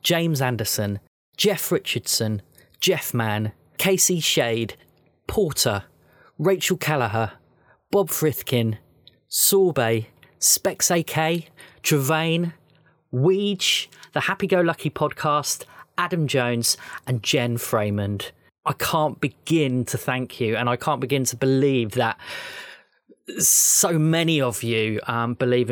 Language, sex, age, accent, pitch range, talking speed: English, male, 20-39, British, 115-160 Hz, 110 wpm